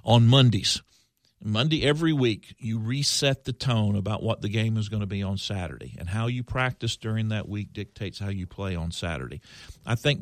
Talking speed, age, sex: 200 wpm, 50-69, male